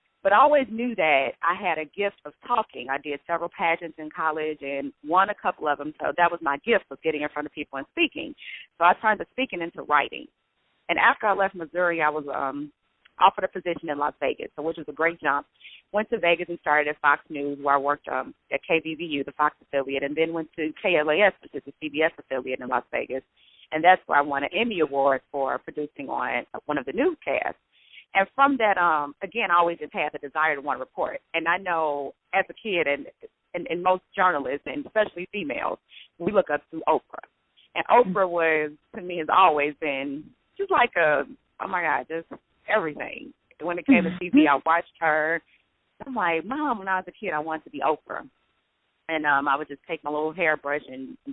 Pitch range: 145-185 Hz